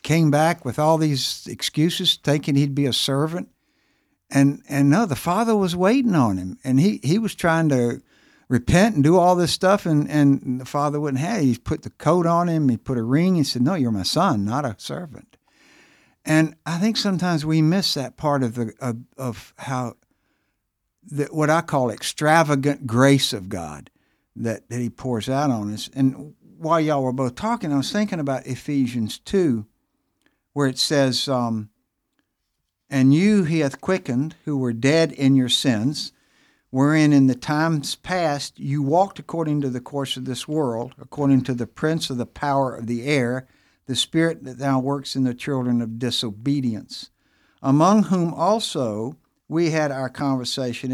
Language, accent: English, American